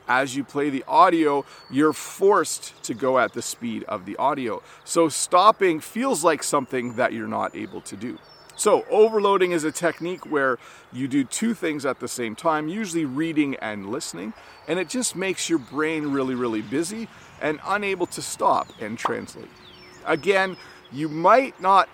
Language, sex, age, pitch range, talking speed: English, male, 40-59, 130-185 Hz, 170 wpm